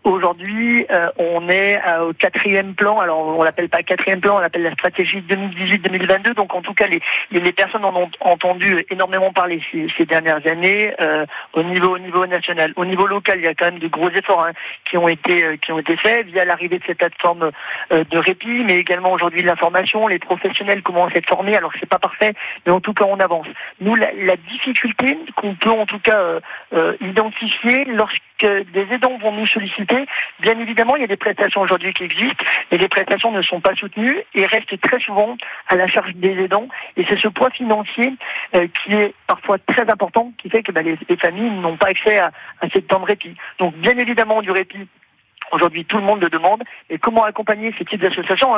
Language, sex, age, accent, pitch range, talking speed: French, male, 50-69, French, 175-215 Hz, 220 wpm